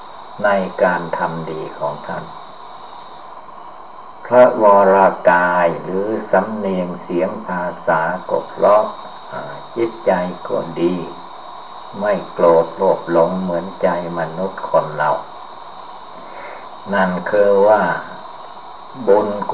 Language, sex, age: Thai, male, 60-79